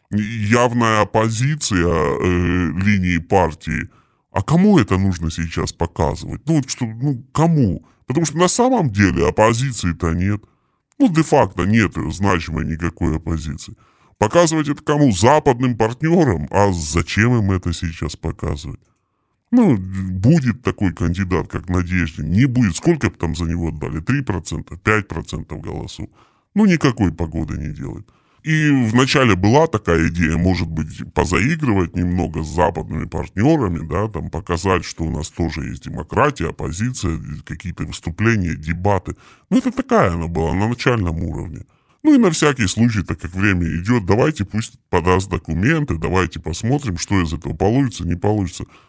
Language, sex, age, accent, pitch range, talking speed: Russian, female, 20-39, native, 85-125 Hz, 145 wpm